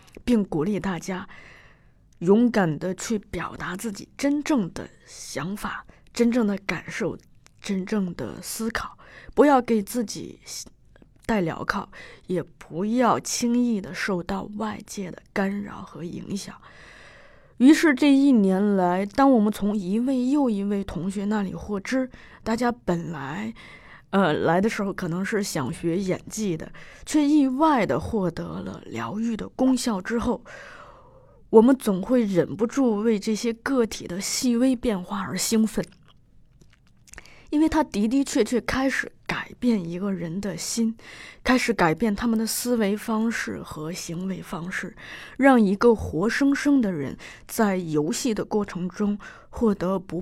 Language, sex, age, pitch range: Chinese, female, 20-39, 180-235 Hz